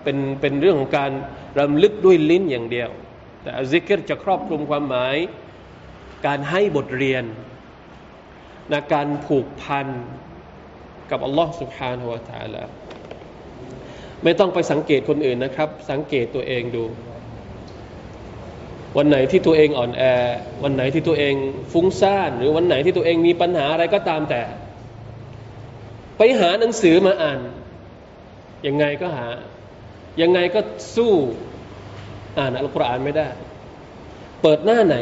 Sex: male